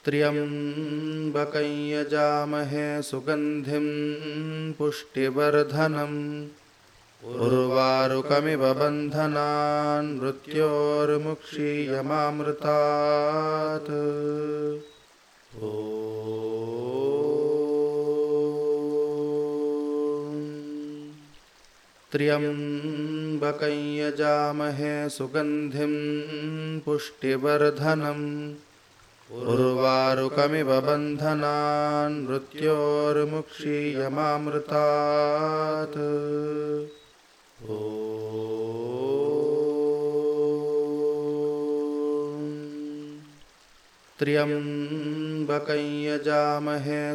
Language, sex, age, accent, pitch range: Telugu, male, 20-39, native, 145-150 Hz